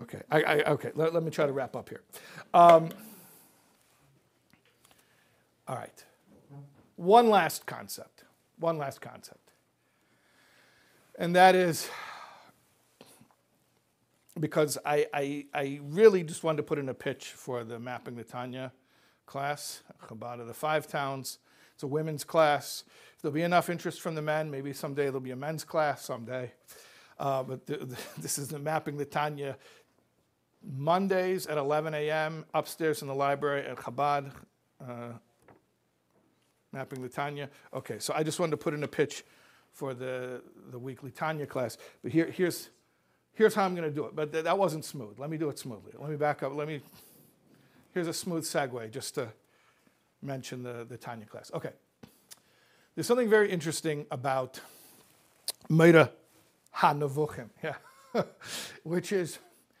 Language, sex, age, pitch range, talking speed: English, male, 60-79, 135-160 Hz, 155 wpm